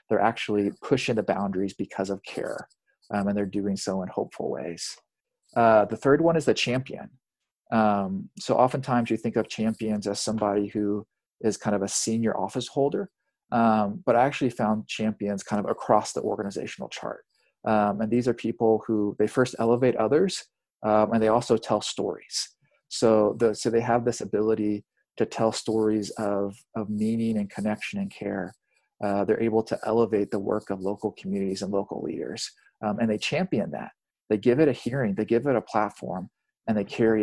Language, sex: English, male